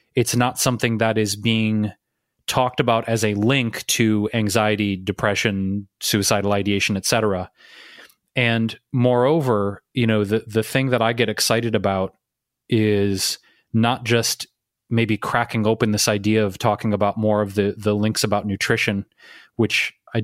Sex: male